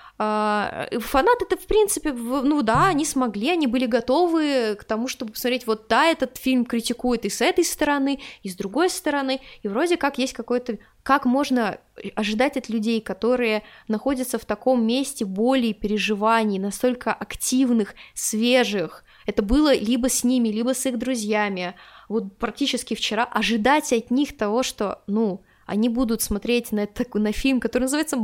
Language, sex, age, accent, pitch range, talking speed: Russian, female, 20-39, native, 215-265 Hz, 160 wpm